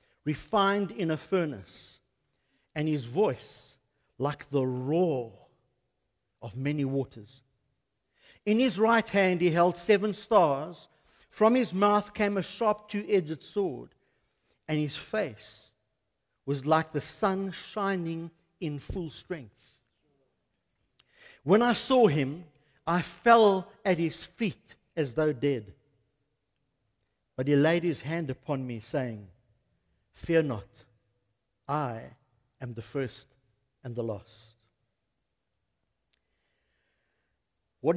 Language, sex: English, male